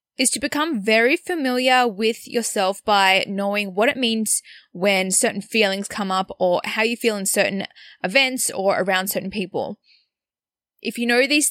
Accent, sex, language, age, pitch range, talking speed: Australian, female, English, 10-29, 195-240 Hz, 165 wpm